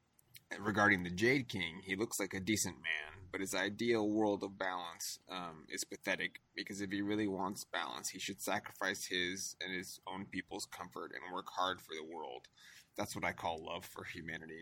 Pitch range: 90-105 Hz